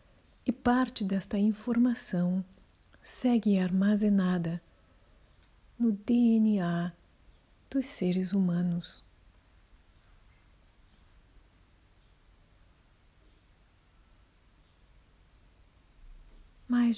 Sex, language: female, Portuguese